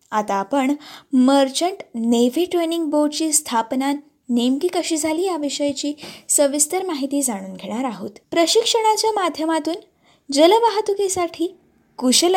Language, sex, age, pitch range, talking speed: Marathi, female, 20-39, 250-335 Hz, 95 wpm